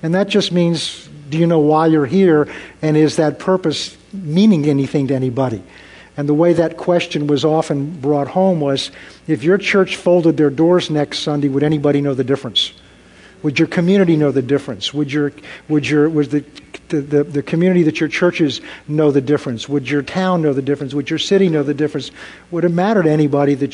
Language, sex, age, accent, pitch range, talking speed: English, male, 50-69, American, 145-170 Hz, 205 wpm